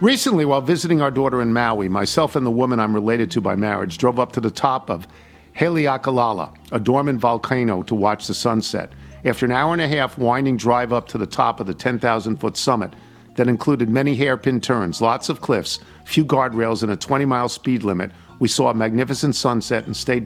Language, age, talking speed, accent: English, 50-69, 200 wpm, American